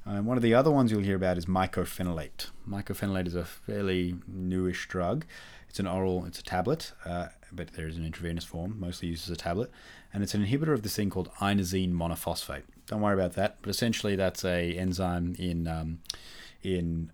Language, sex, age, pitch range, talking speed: English, male, 30-49, 85-100 Hz, 200 wpm